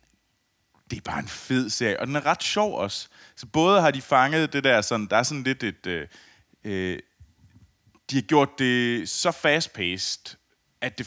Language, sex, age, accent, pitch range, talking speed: Danish, male, 30-49, native, 95-125 Hz, 185 wpm